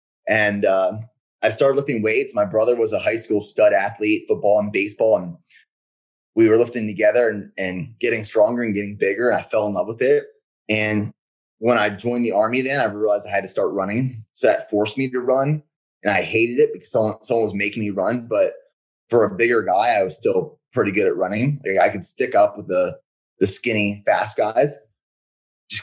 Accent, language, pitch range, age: American, English, 100-130 Hz, 20-39